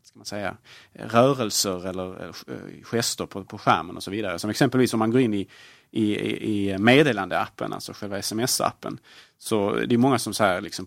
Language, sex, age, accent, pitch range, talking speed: Swedish, male, 30-49, Norwegian, 95-115 Hz, 195 wpm